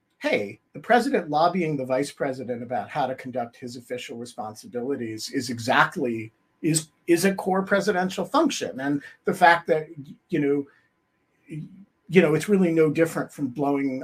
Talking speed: 155 wpm